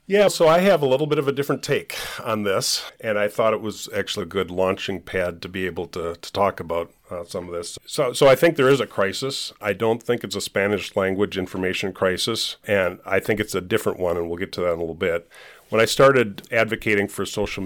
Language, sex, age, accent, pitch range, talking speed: English, male, 40-59, American, 95-120 Hz, 250 wpm